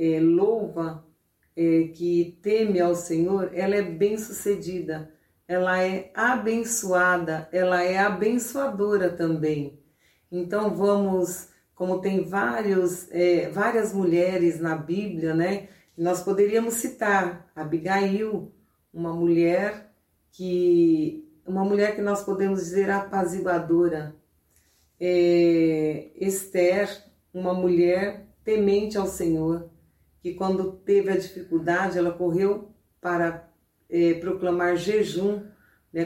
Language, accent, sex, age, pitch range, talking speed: Portuguese, Brazilian, female, 40-59, 170-195 Hz, 90 wpm